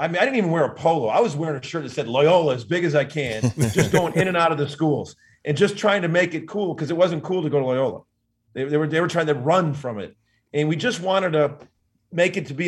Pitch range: 130-165 Hz